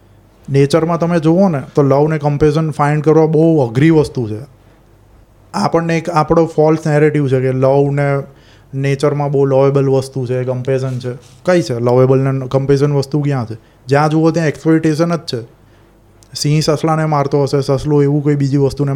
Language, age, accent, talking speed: Gujarati, 30-49, native, 165 wpm